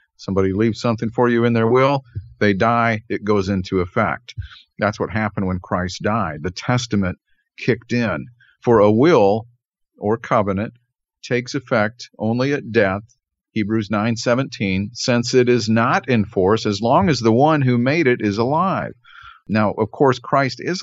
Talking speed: 165 wpm